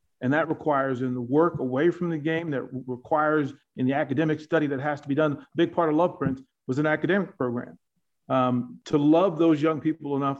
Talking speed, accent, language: 215 wpm, American, English